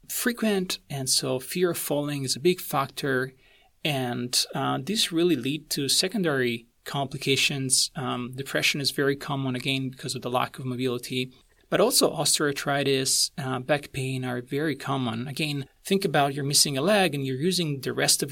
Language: English